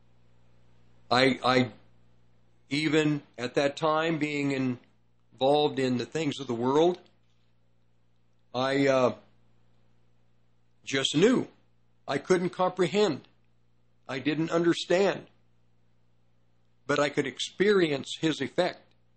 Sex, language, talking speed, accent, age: male, English, 95 wpm, American, 50-69